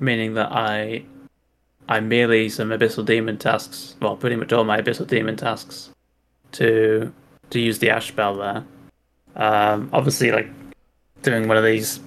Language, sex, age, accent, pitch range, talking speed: English, male, 10-29, British, 105-125 Hz, 155 wpm